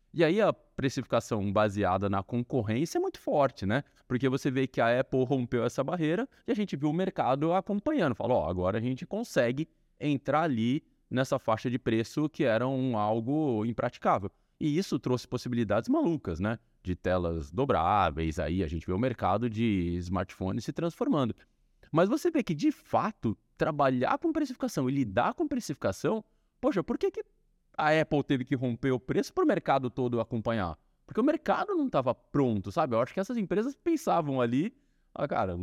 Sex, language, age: male, Portuguese, 20-39